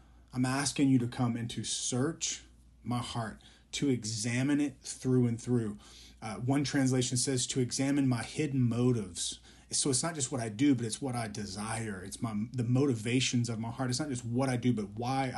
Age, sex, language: 30-49, male, English